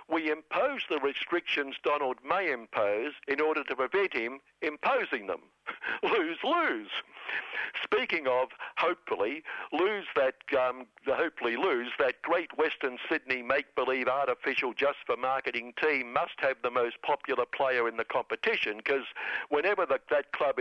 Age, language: 60-79, English